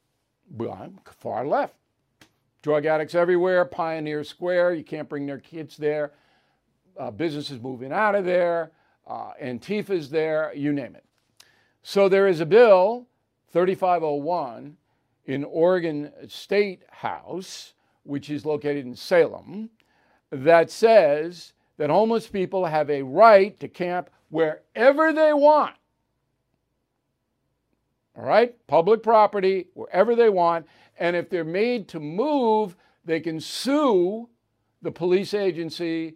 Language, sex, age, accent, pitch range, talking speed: English, male, 60-79, American, 145-195 Hz, 125 wpm